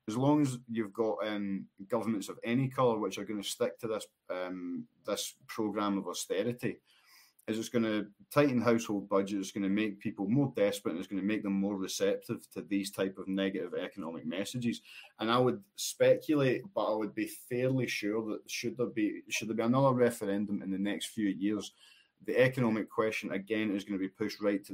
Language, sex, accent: English, male, British